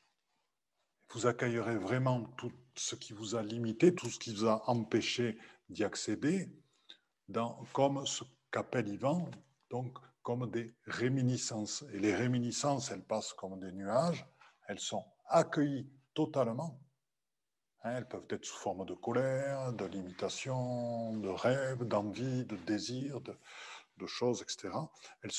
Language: French